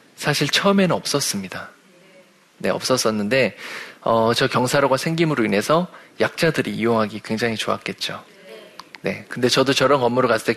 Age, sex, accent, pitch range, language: 20-39, male, native, 115-155 Hz, Korean